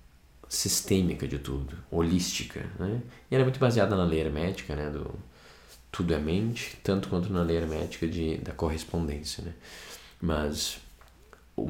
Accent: Brazilian